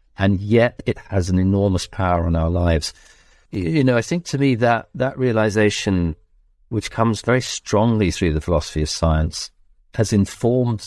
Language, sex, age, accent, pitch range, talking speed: English, male, 50-69, British, 85-110 Hz, 165 wpm